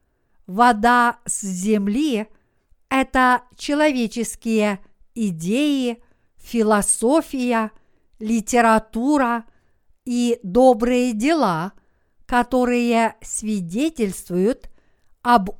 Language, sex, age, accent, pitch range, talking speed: Russian, female, 50-69, native, 205-260 Hz, 55 wpm